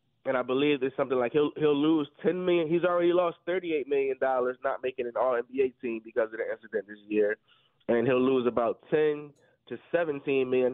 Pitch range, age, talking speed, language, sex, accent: 130-165 Hz, 20-39, 210 wpm, English, male, American